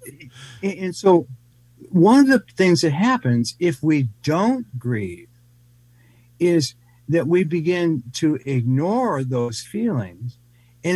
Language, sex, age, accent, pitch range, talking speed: English, male, 50-69, American, 120-175 Hz, 115 wpm